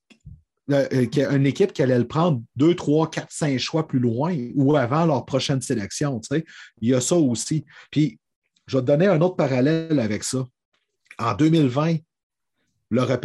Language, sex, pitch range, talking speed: French, male, 125-165 Hz, 170 wpm